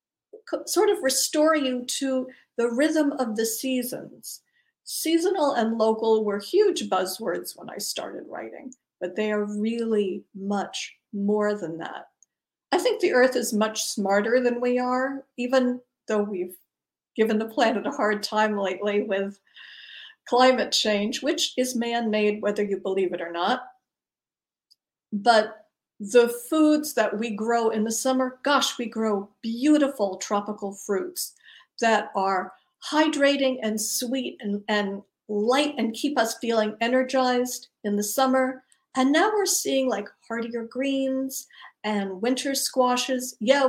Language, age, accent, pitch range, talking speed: English, 50-69, American, 215-265 Hz, 140 wpm